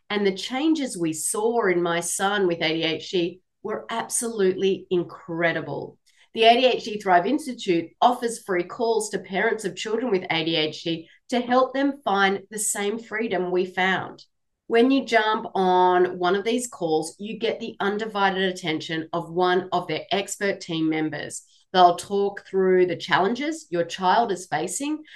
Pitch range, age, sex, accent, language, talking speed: 175-230 Hz, 30-49, female, Australian, English, 155 wpm